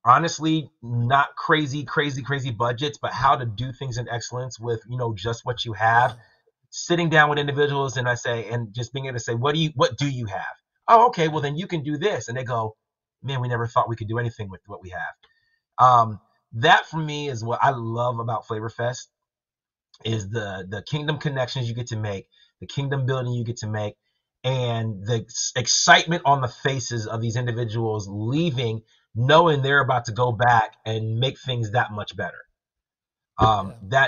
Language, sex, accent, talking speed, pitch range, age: English, male, American, 200 wpm, 115-145 Hz, 30-49